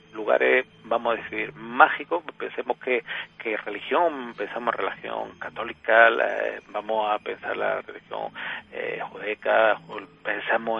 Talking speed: 135 wpm